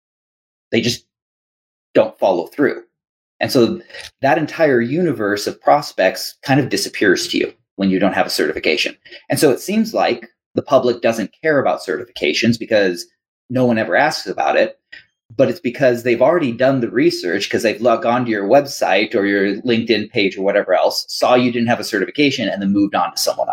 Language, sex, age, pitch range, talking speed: English, male, 30-49, 100-130 Hz, 190 wpm